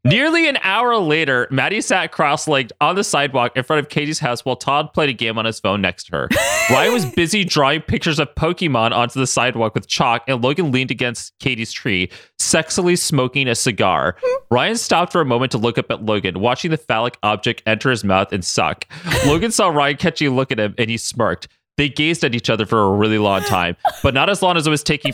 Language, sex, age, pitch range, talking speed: English, male, 30-49, 115-180 Hz, 230 wpm